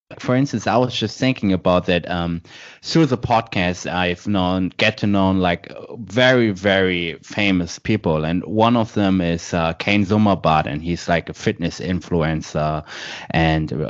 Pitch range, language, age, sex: 90-115 Hz, English, 30-49, male